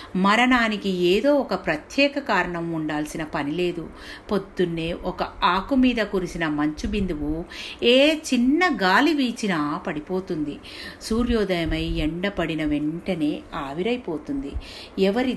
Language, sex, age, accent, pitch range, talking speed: Telugu, female, 50-69, native, 150-230 Hz, 100 wpm